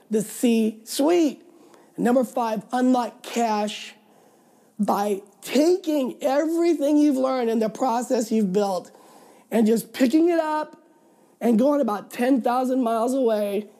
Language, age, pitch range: English, 50-69, 215-265 Hz